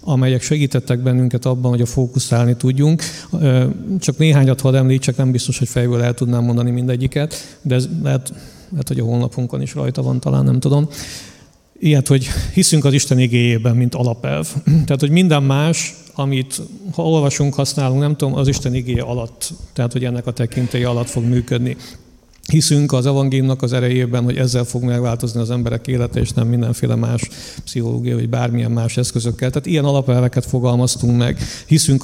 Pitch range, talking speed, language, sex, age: 120-135 Hz, 170 wpm, Hungarian, male, 50-69